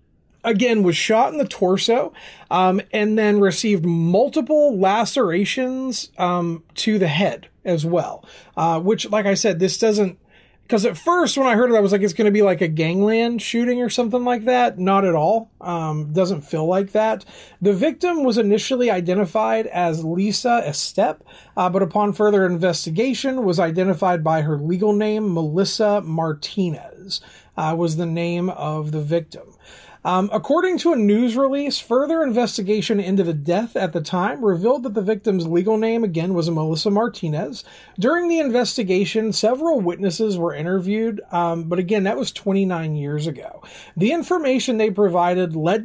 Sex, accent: male, American